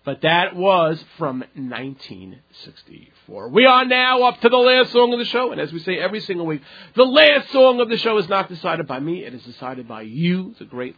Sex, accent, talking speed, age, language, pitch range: male, American, 225 wpm, 40-59, English, 135-225 Hz